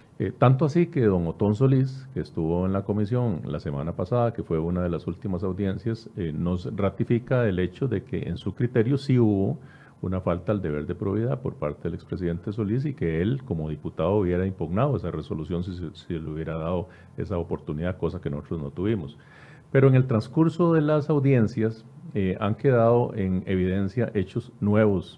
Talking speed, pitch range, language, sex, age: 195 wpm, 85-120 Hz, Spanish, male, 50-69